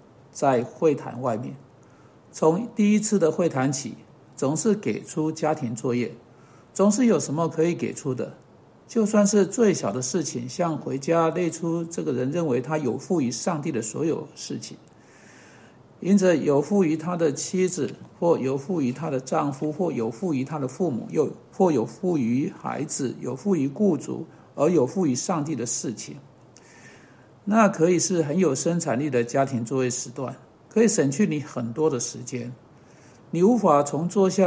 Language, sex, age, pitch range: Chinese, male, 50-69, 135-190 Hz